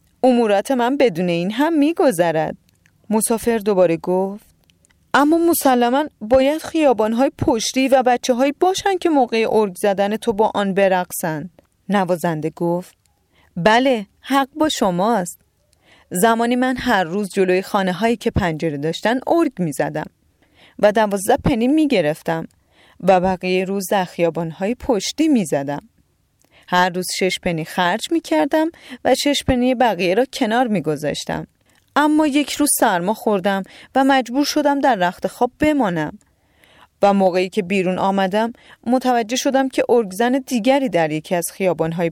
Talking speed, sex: 135 wpm, female